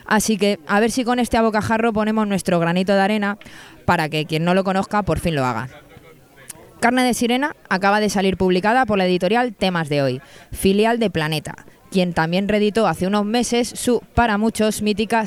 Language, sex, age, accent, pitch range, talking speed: Spanish, female, 20-39, Spanish, 175-220 Hz, 195 wpm